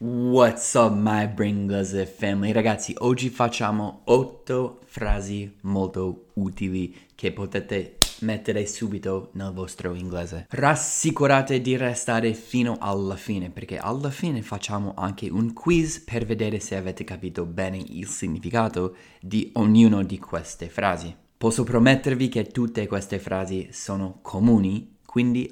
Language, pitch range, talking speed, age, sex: Italian, 95-125 Hz, 130 wpm, 20-39, male